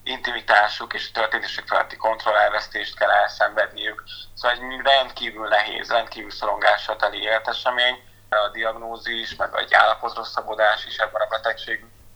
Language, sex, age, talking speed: Hungarian, male, 30-49, 125 wpm